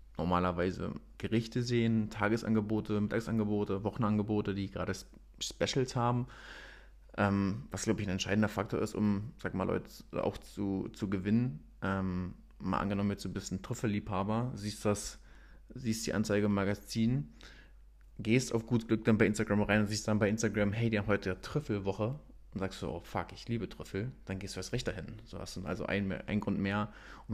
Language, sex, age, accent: German, male, 30-49, German